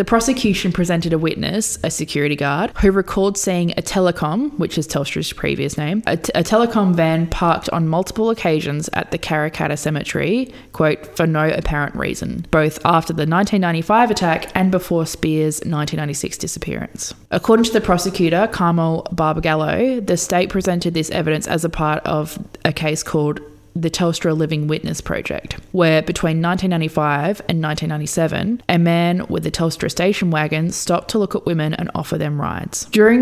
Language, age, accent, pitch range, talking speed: English, 20-39, Australian, 155-185 Hz, 165 wpm